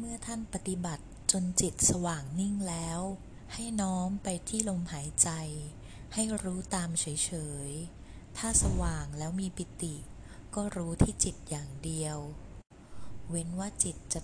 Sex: female